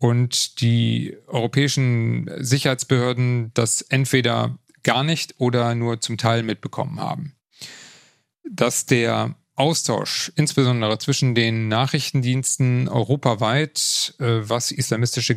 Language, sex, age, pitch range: German, male, 40-59, 115-135 Hz